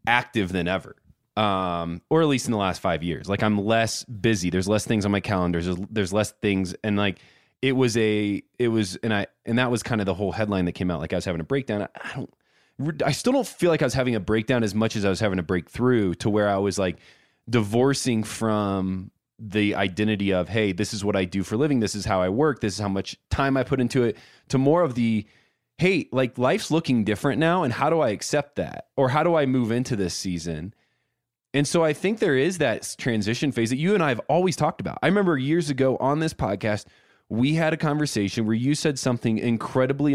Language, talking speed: English, 240 wpm